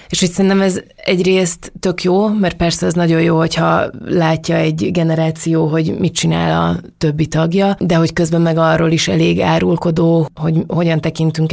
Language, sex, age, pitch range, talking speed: Hungarian, female, 20-39, 155-175 Hz, 170 wpm